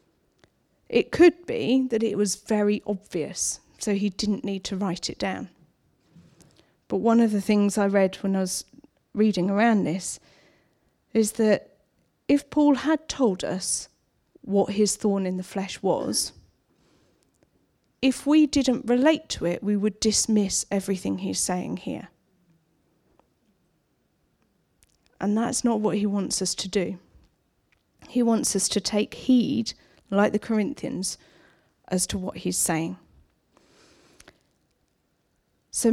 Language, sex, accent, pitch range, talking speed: English, female, British, 195-230 Hz, 135 wpm